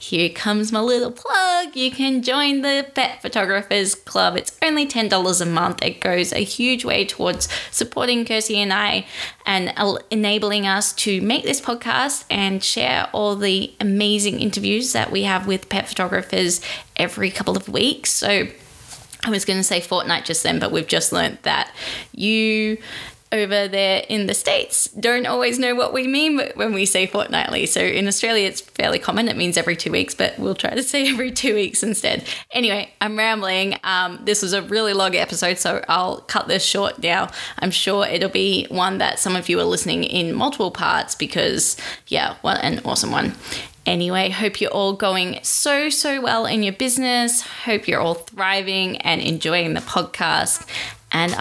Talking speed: 180 wpm